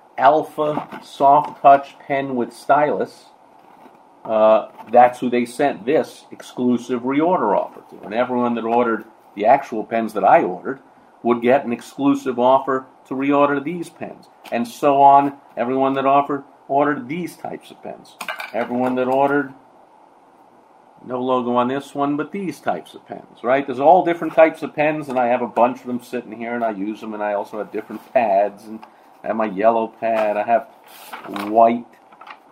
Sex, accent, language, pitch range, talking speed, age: male, American, English, 110-135 Hz, 175 wpm, 50-69